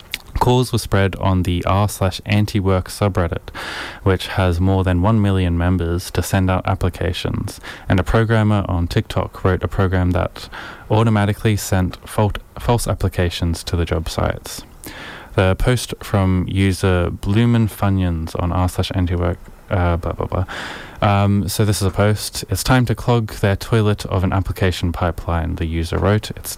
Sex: male